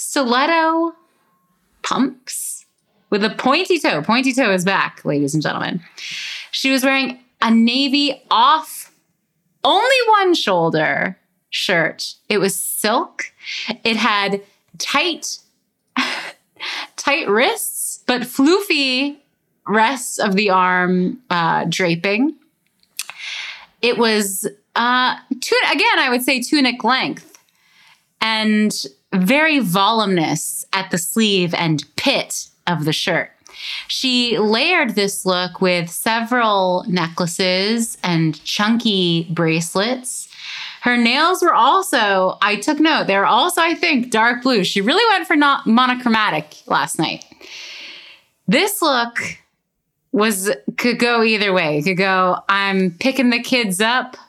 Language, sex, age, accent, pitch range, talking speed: English, female, 30-49, American, 185-270 Hz, 115 wpm